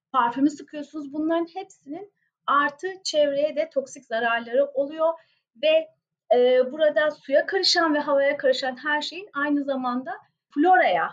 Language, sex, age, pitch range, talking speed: Turkish, female, 40-59, 235-320 Hz, 125 wpm